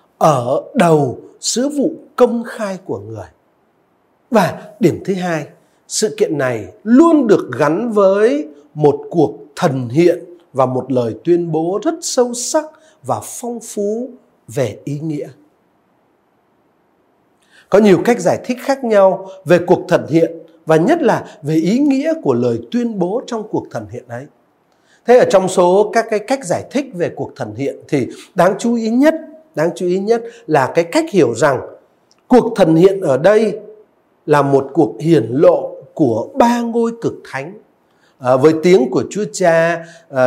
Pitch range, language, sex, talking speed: 160-240 Hz, Vietnamese, male, 165 wpm